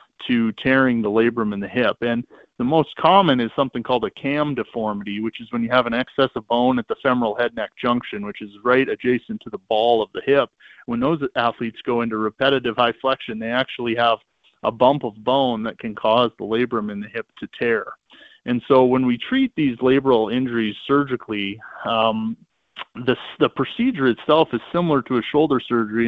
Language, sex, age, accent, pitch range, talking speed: English, male, 20-39, American, 110-130 Hz, 200 wpm